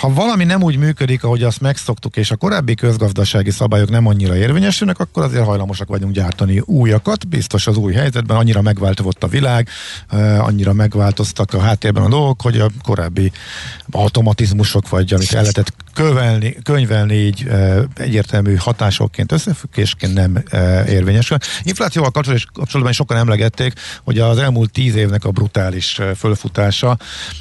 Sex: male